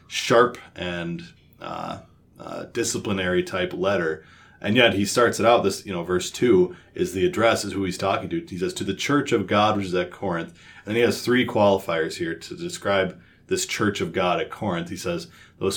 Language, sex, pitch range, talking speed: English, male, 90-115 Hz, 205 wpm